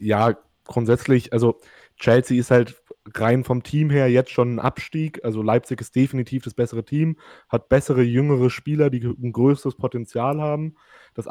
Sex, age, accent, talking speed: male, 20-39, German, 165 wpm